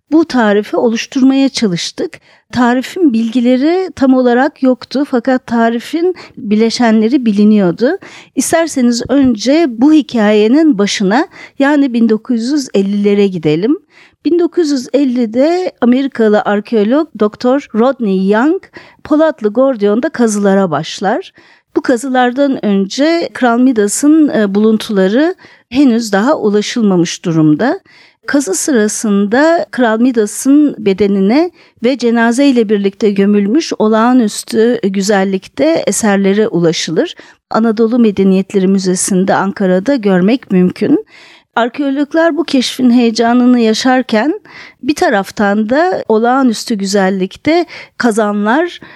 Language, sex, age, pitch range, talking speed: Turkish, female, 50-69, 210-290 Hz, 90 wpm